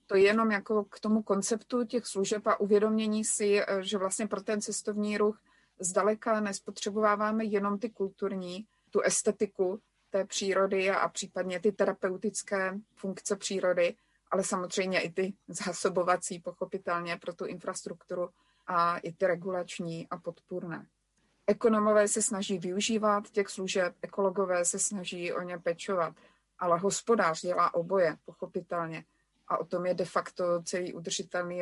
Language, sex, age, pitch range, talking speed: Slovak, female, 30-49, 175-205 Hz, 140 wpm